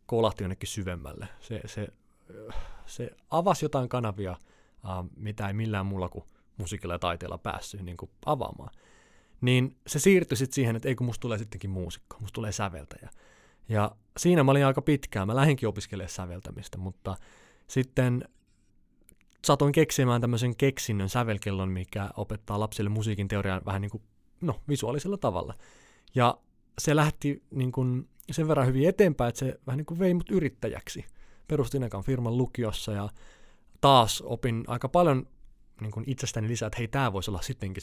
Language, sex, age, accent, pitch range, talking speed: Finnish, male, 20-39, native, 100-130 Hz, 155 wpm